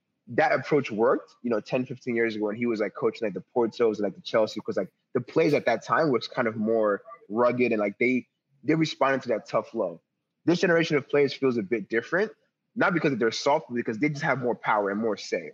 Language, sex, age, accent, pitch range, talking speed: English, male, 20-39, American, 105-135 Hz, 245 wpm